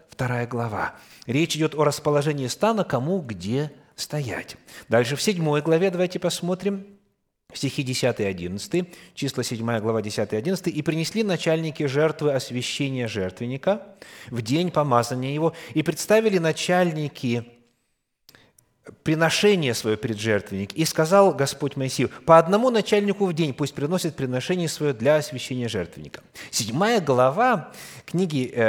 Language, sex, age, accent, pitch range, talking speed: Russian, male, 30-49, native, 125-190 Hz, 125 wpm